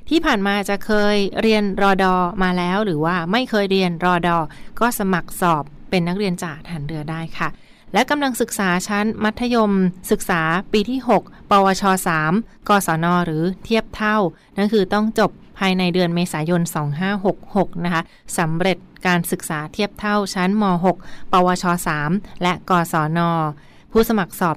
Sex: female